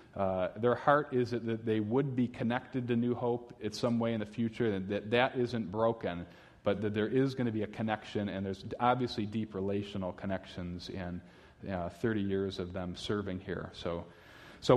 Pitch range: 100-130 Hz